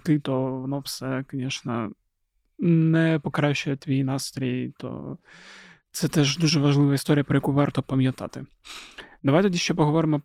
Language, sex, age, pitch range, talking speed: Ukrainian, male, 20-39, 140-150 Hz, 130 wpm